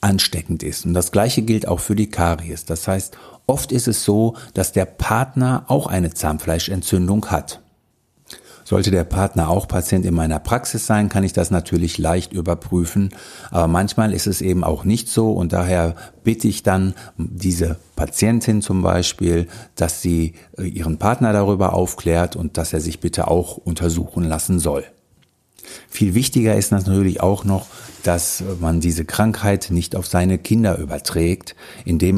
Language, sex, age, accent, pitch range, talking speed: German, male, 50-69, German, 85-105 Hz, 160 wpm